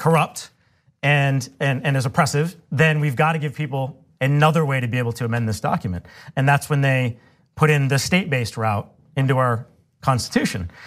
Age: 30-49